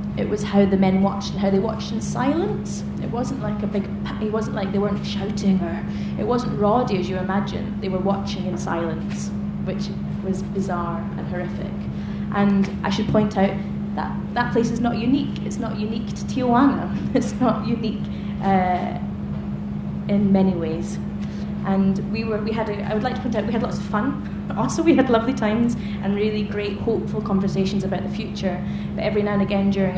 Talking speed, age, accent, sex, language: 195 wpm, 20-39, British, female, English